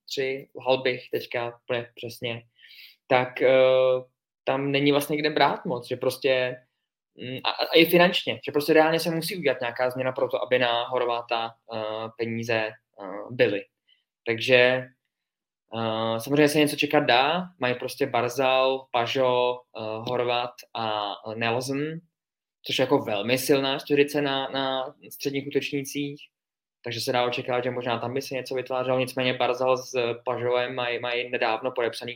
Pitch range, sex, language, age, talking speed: 120-135 Hz, male, Czech, 20-39, 145 wpm